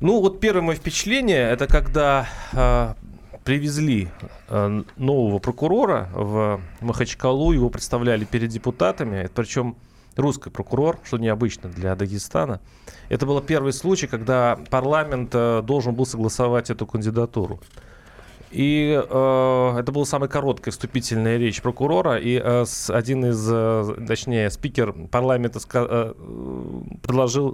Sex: male